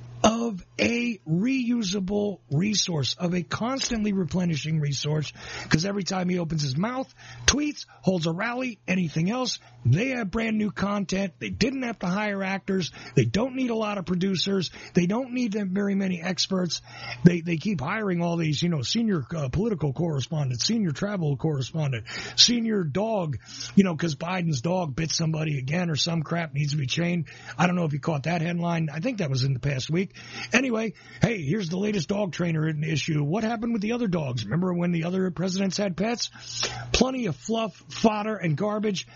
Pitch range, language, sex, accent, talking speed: 150-210 Hz, English, male, American, 190 wpm